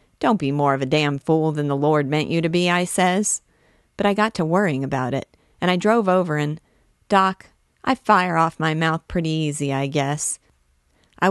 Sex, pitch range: female, 145-180 Hz